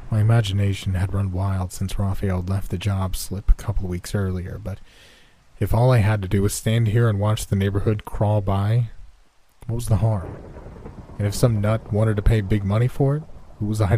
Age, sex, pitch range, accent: 30-49, male, 95-115 Hz, American